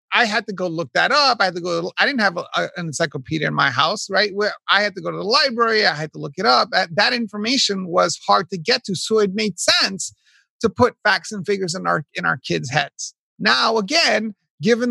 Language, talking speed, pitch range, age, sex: English, 240 wpm, 185-235 Hz, 30-49, male